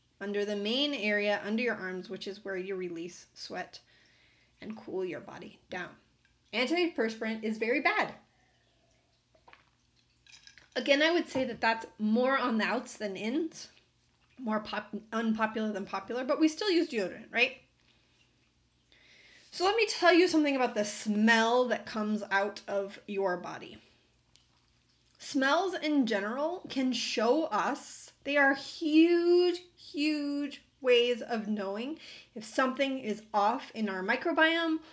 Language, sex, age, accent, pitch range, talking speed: English, female, 30-49, American, 210-300 Hz, 135 wpm